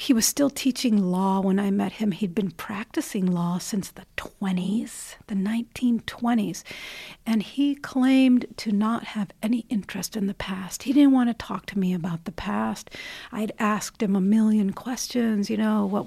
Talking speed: 180 wpm